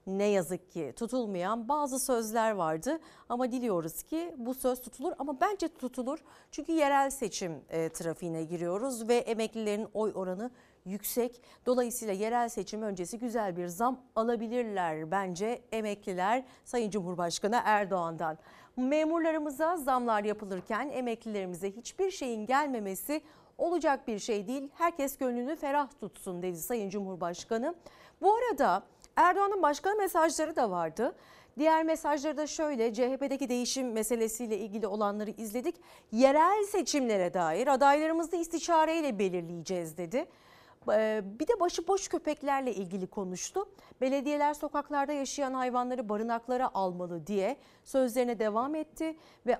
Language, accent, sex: Turkish, native, female